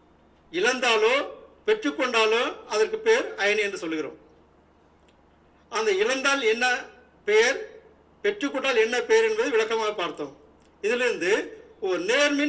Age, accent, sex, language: 50-69, native, male, Tamil